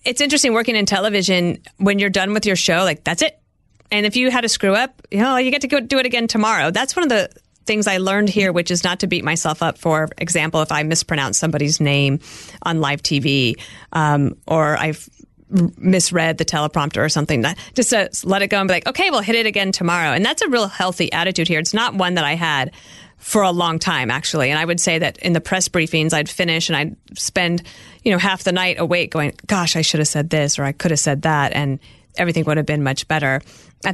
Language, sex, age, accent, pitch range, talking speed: English, female, 30-49, American, 155-205 Hz, 245 wpm